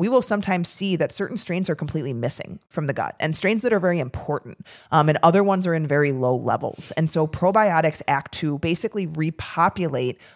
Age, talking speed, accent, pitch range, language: 30-49, 205 wpm, American, 145-185 Hz, English